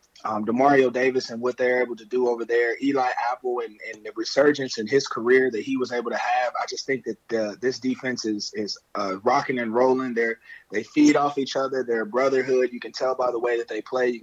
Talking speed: 245 wpm